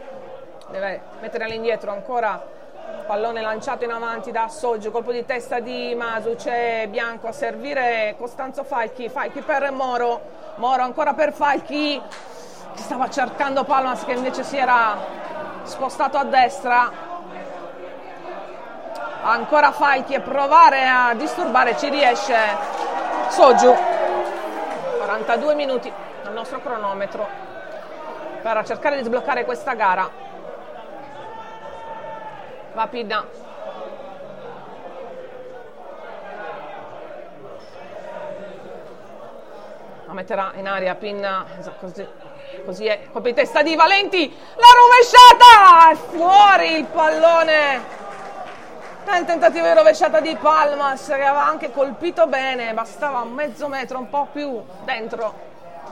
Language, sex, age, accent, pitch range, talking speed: Italian, female, 40-59, native, 240-305 Hz, 105 wpm